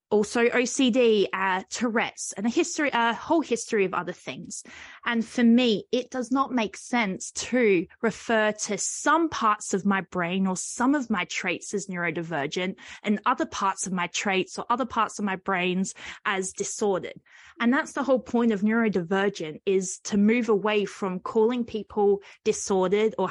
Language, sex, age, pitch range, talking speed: English, female, 20-39, 190-235 Hz, 170 wpm